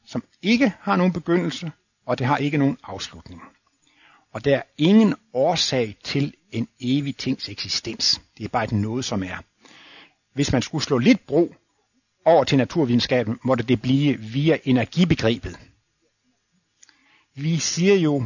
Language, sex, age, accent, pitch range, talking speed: Danish, male, 60-79, native, 110-160 Hz, 150 wpm